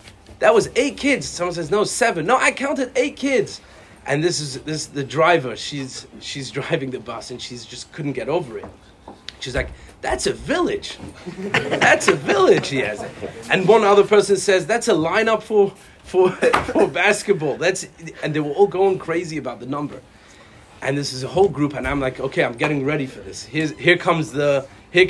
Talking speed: 200 wpm